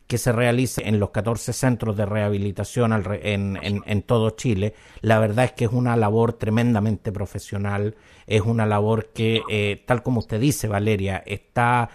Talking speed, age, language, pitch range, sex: 170 wpm, 50-69, Spanish, 110-140 Hz, male